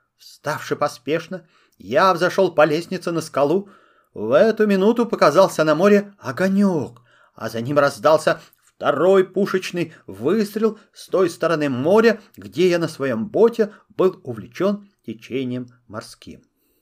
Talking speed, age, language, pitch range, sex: 125 wpm, 40-59, Russian, 155-210 Hz, male